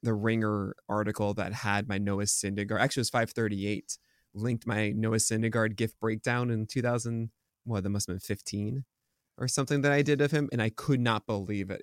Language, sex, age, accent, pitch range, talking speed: English, male, 20-39, American, 105-135 Hz, 190 wpm